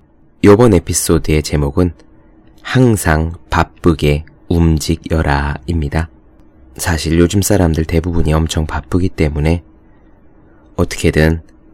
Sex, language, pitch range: male, Korean, 80-95 Hz